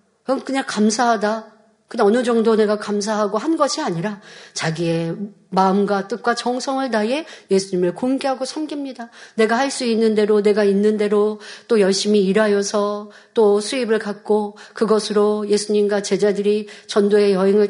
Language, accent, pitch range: Korean, native, 200-250 Hz